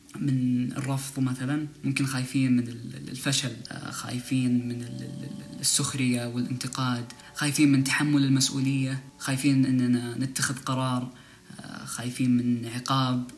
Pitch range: 120-135 Hz